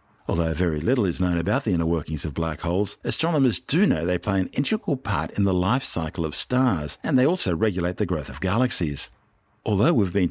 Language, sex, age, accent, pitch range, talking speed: English, male, 50-69, Australian, 85-105 Hz, 215 wpm